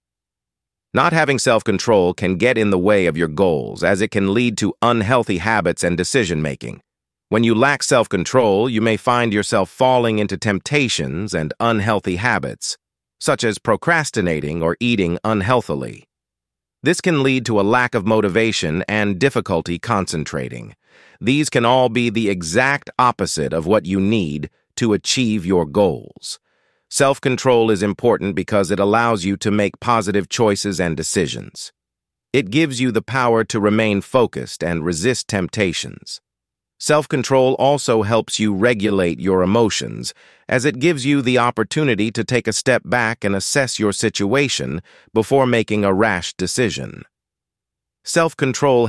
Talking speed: 145 wpm